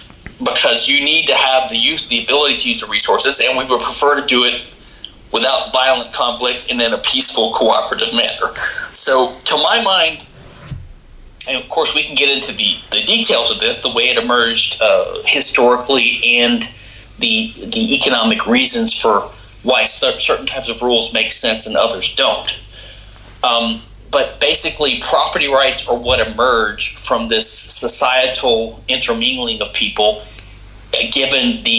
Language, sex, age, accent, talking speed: English, male, 30-49, American, 155 wpm